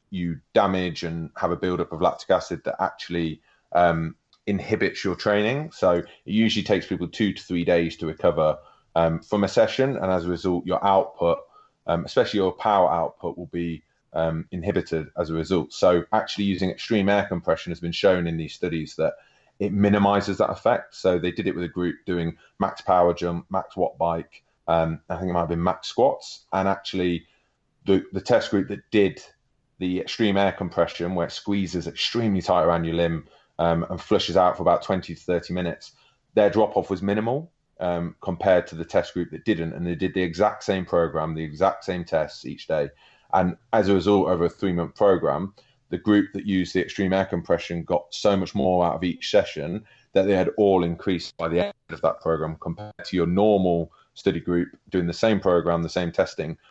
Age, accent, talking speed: 30-49, British, 200 wpm